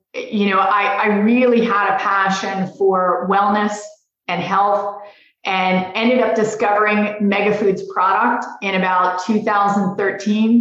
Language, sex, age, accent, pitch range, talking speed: English, female, 30-49, American, 185-210 Hz, 125 wpm